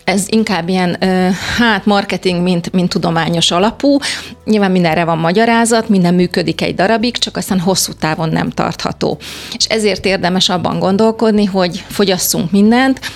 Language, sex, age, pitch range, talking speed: Hungarian, female, 30-49, 175-205 Hz, 140 wpm